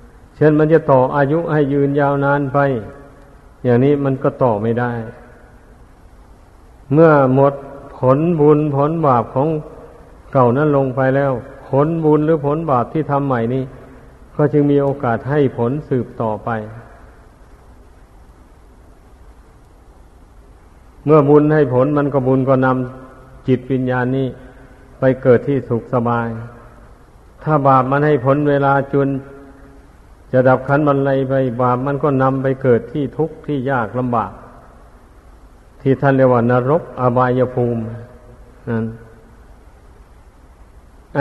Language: Thai